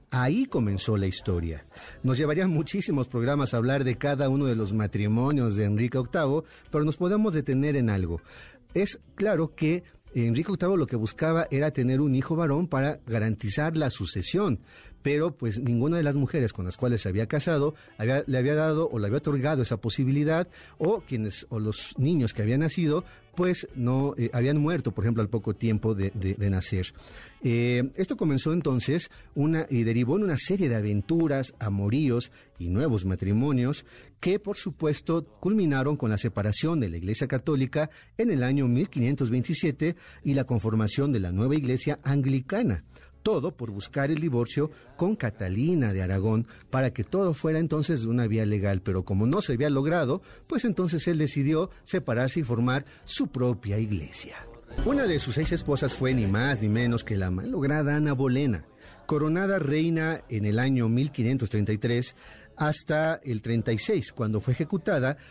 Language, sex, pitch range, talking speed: Spanish, male, 110-155 Hz, 170 wpm